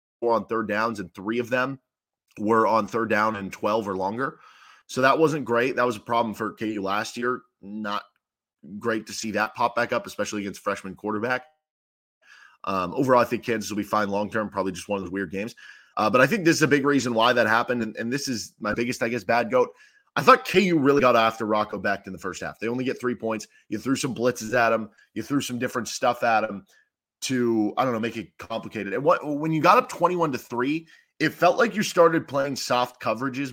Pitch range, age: 110-140 Hz, 20-39